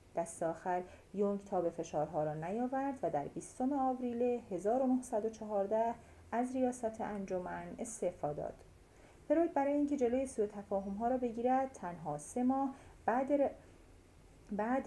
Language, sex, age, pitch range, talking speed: Persian, female, 30-49, 160-245 Hz, 130 wpm